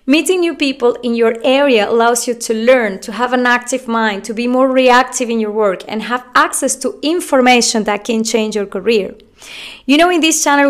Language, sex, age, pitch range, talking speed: English, female, 20-39, 220-270 Hz, 210 wpm